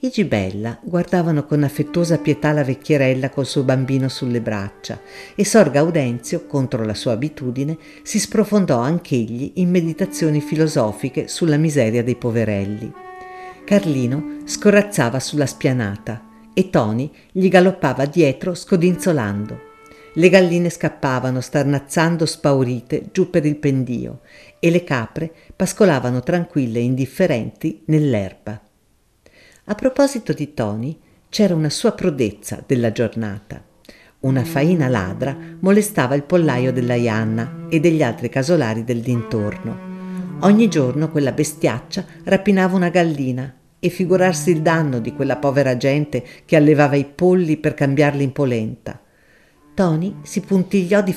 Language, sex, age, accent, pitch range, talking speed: Italian, female, 50-69, native, 125-180 Hz, 125 wpm